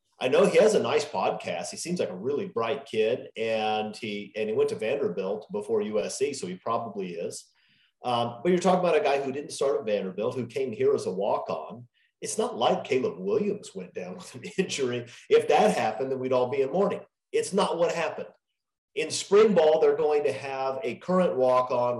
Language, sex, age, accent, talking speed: English, male, 40-59, American, 215 wpm